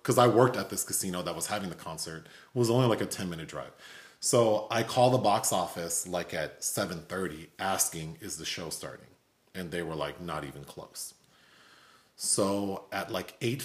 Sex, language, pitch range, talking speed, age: male, English, 90-120 Hz, 200 wpm, 30-49